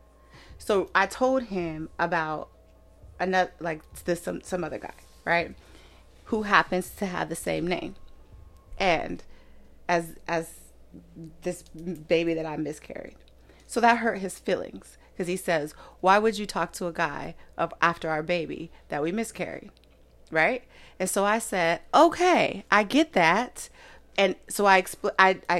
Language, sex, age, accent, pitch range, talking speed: English, female, 30-49, American, 160-195 Hz, 150 wpm